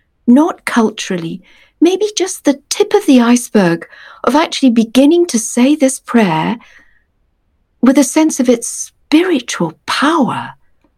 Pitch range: 205-260 Hz